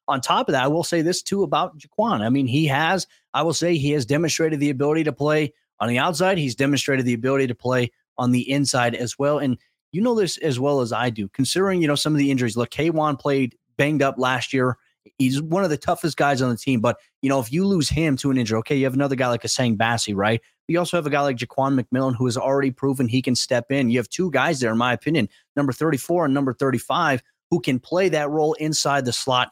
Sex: male